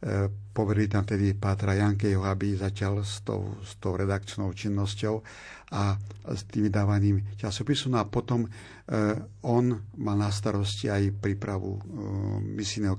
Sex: male